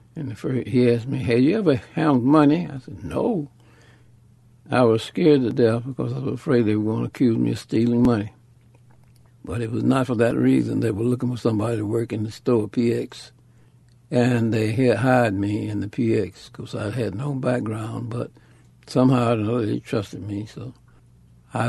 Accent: American